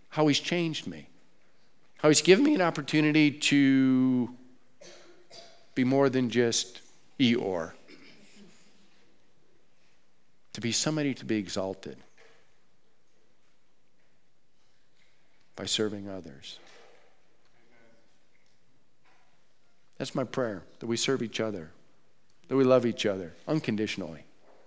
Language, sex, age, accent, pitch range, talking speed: English, male, 50-69, American, 110-140 Hz, 95 wpm